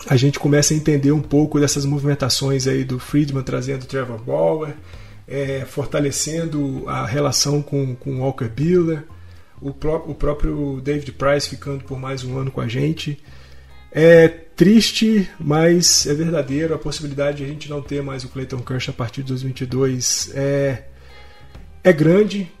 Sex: male